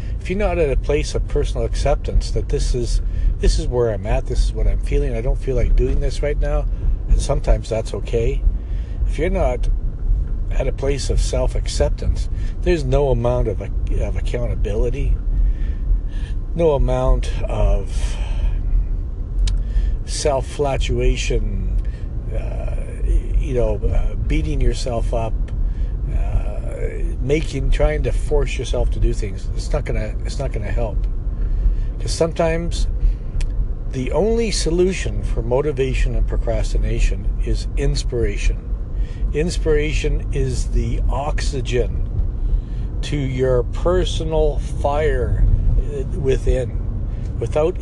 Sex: male